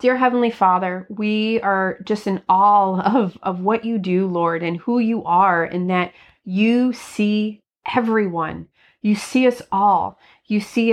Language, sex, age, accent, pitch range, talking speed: English, female, 30-49, American, 185-225 Hz, 160 wpm